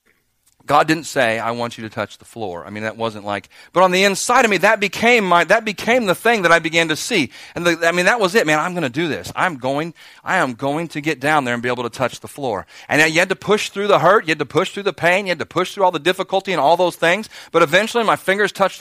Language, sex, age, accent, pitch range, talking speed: English, male, 40-59, American, 135-195 Hz, 295 wpm